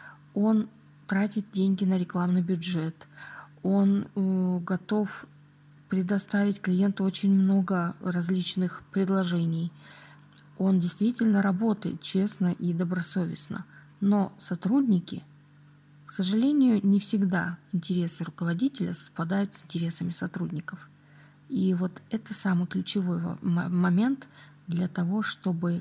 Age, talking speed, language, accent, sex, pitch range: 20-39, 95 wpm, Russian, native, female, 155-195 Hz